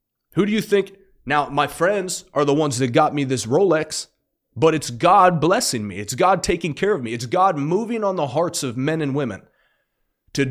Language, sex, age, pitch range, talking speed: English, male, 30-49, 135-180 Hz, 210 wpm